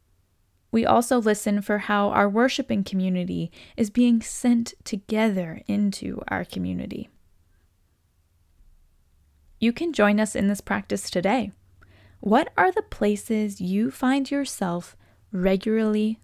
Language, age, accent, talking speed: English, 10-29, American, 115 wpm